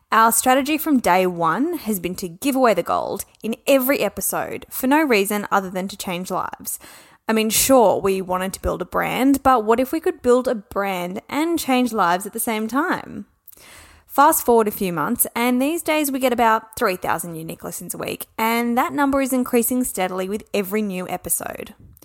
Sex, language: female, English